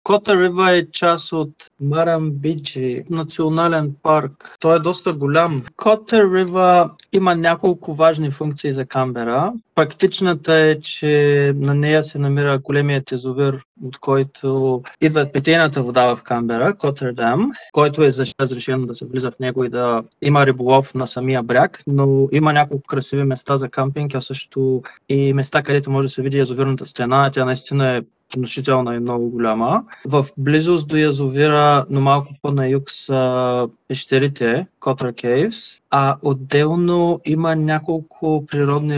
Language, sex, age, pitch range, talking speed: Bulgarian, male, 20-39, 130-155 Hz, 150 wpm